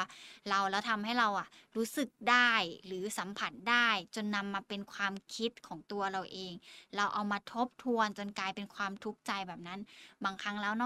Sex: female